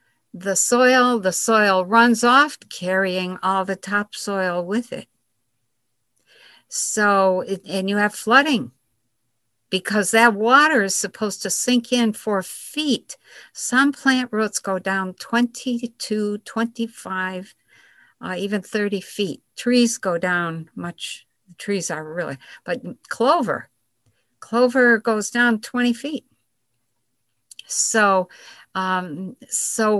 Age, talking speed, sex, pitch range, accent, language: 60-79, 110 wpm, female, 185-240 Hz, American, English